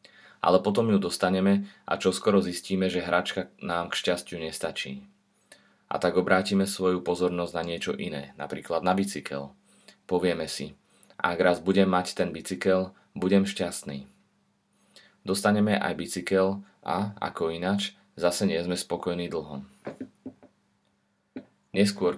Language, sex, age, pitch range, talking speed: Slovak, male, 30-49, 80-95 Hz, 125 wpm